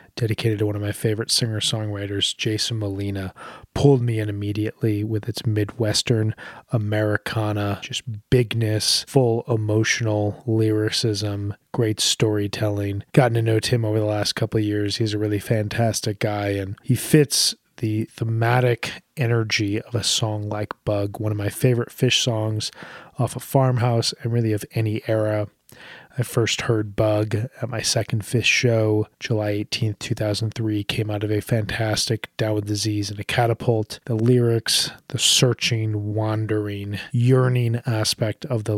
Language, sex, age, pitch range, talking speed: English, male, 20-39, 105-120 Hz, 150 wpm